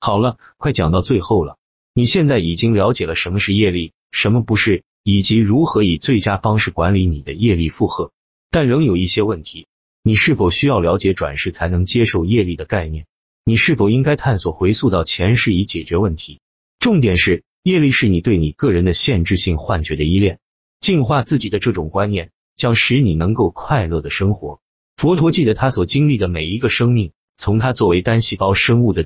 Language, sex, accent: Chinese, male, native